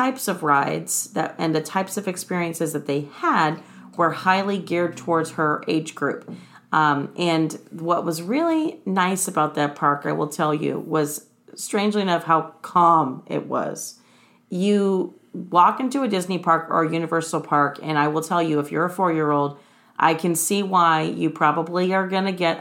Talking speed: 185 wpm